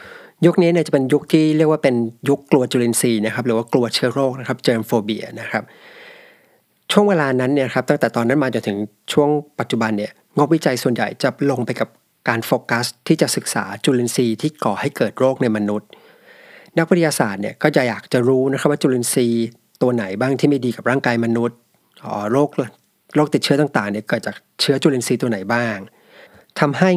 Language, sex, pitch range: Thai, male, 120-150 Hz